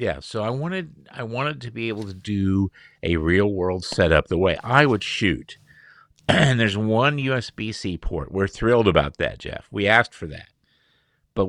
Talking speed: 180 wpm